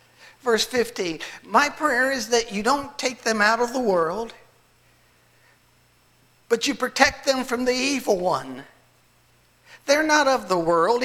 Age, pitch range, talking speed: 60-79, 180-260 Hz, 145 wpm